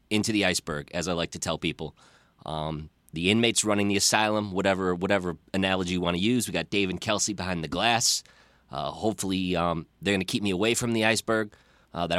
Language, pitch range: English, 90-110 Hz